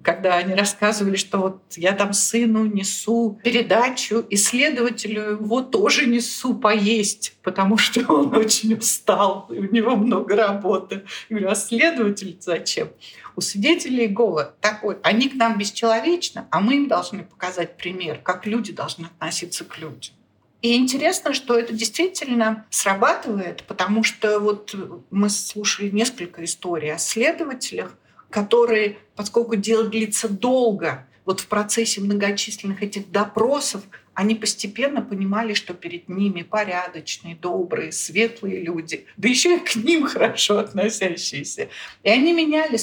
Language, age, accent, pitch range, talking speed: Russian, 50-69, native, 195-230 Hz, 135 wpm